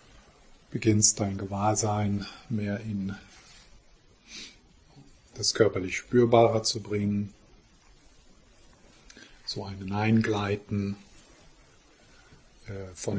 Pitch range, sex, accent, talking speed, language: 95-110 Hz, male, German, 65 wpm, German